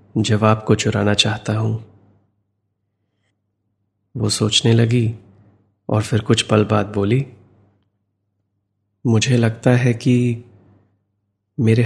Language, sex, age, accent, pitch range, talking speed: Hindi, male, 30-49, native, 100-115 Hz, 95 wpm